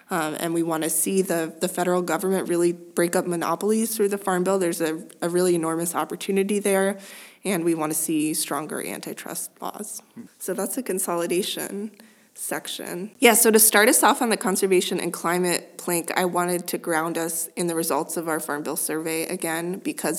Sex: female